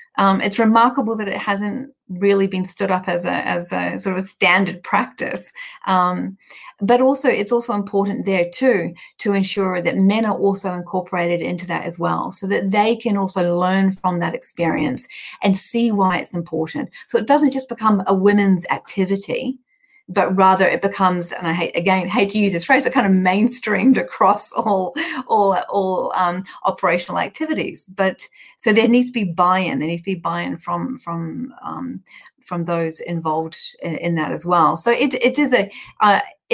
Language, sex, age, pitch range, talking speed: English, female, 30-49, 175-210 Hz, 185 wpm